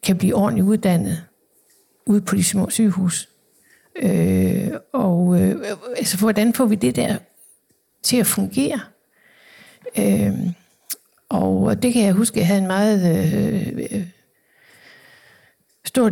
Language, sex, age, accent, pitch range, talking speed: Danish, female, 60-79, native, 190-230 Hz, 105 wpm